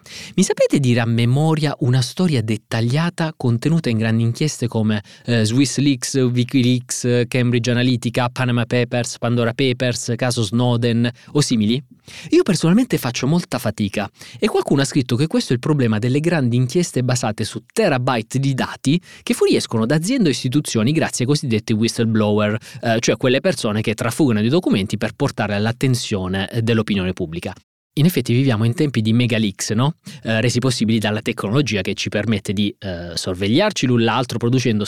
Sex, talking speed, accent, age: male, 160 wpm, native, 30-49